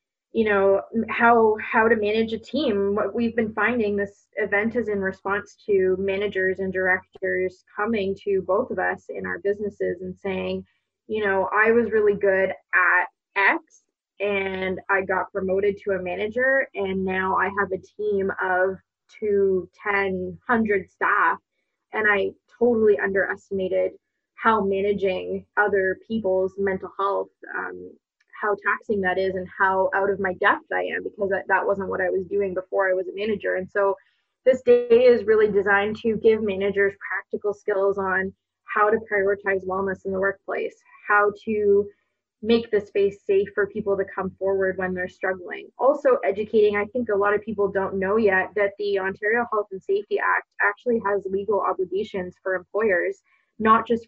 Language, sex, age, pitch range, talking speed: English, female, 20-39, 190-215 Hz, 170 wpm